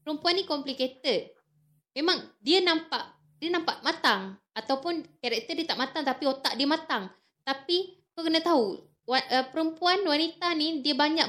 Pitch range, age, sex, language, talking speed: 220-285 Hz, 20-39, female, Malay, 145 wpm